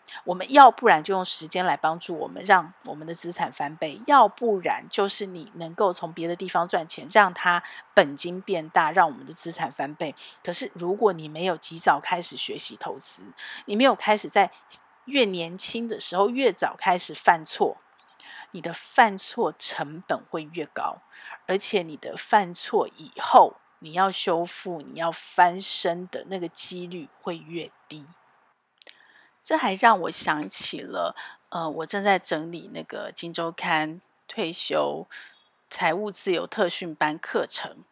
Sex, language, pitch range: female, Chinese, 165-210 Hz